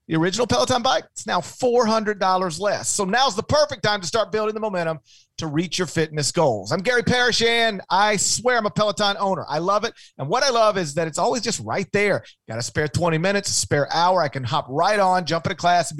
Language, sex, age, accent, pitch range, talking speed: English, male, 40-59, American, 150-210 Hz, 240 wpm